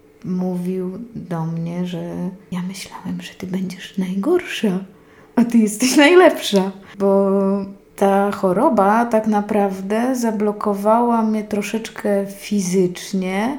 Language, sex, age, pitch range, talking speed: Polish, female, 20-39, 185-230 Hz, 100 wpm